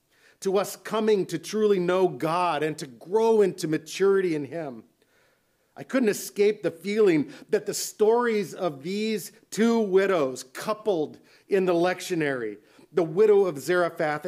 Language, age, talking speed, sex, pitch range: English, 50-69, 145 wpm, male, 145-185 Hz